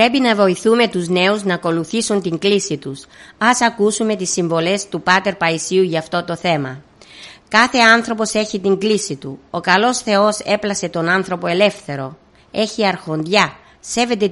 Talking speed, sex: 155 wpm, female